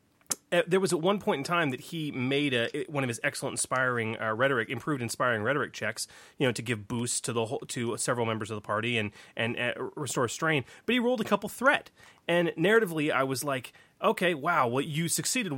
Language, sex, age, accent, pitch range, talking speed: English, male, 30-49, American, 125-175 Hz, 225 wpm